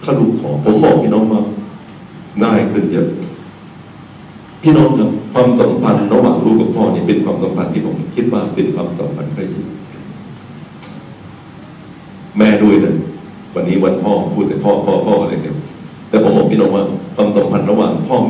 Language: Thai